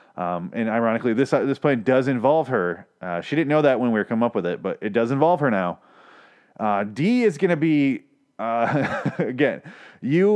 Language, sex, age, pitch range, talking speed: English, male, 30-49, 115-175 Hz, 215 wpm